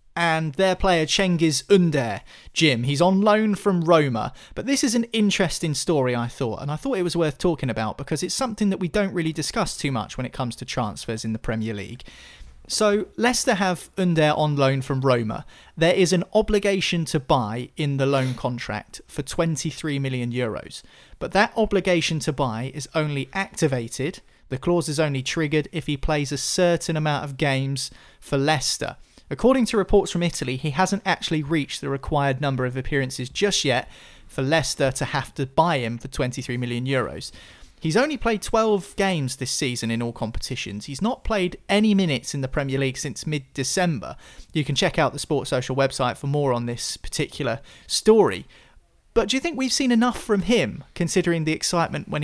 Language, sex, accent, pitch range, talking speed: English, male, British, 130-180 Hz, 190 wpm